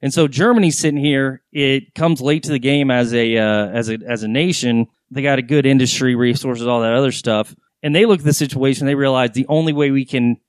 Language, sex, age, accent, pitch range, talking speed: English, male, 30-49, American, 125-155 Hz, 240 wpm